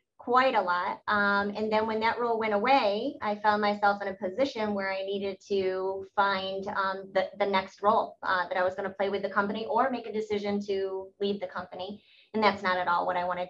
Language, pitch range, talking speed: English, 185-205 Hz, 235 wpm